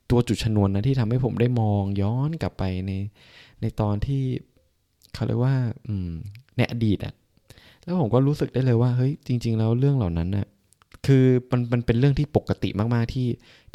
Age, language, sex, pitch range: 20-39, Thai, male, 90-115 Hz